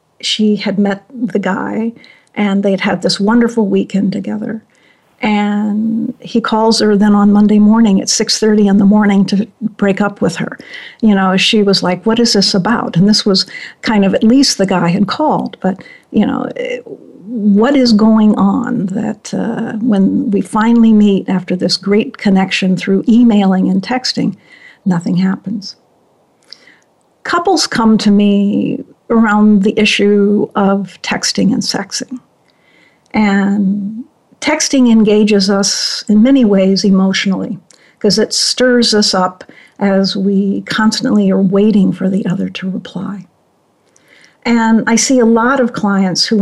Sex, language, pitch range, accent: female, English, 200-235 Hz, American